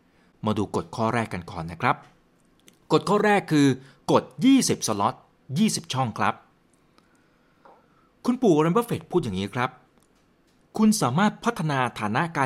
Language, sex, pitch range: Thai, male, 110-170 Hz